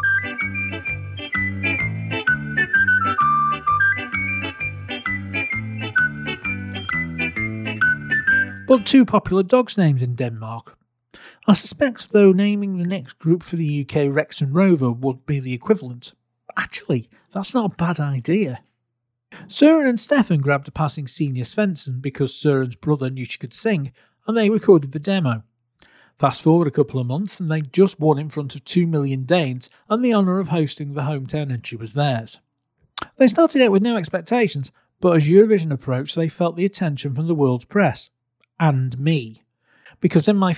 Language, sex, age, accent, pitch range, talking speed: English, male, 40-59, British, 125-200 Hz, 145 wpm